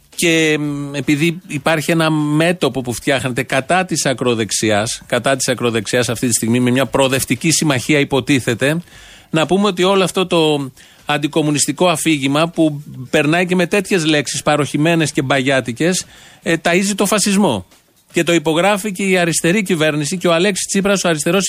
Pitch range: 145-175 Hz